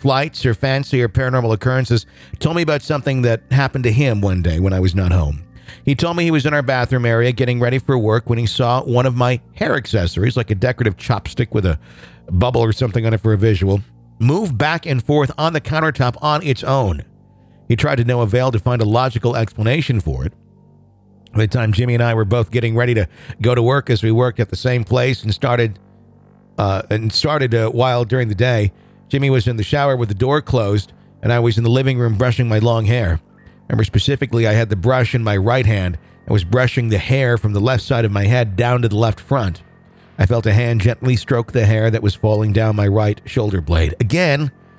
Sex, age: male, 50-69